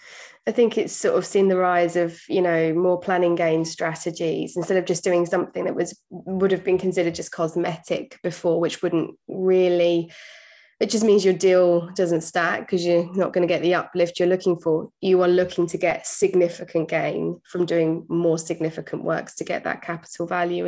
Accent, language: British, English